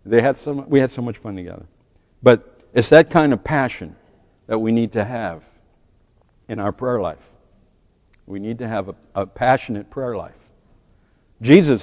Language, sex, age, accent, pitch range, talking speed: English, male, 60-79, American, 100-140 Hz, 170 wpm